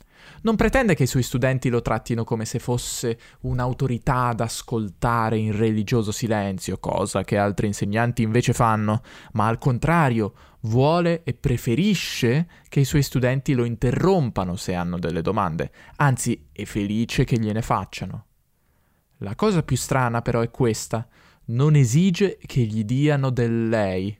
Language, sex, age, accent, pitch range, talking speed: Italian, male, 20-39, native, 110-135 Hz, 145 wpm